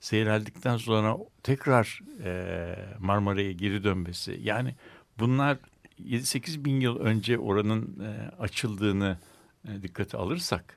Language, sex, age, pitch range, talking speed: Turkish, male, 60-79, 90-115 Hz, 90 wpm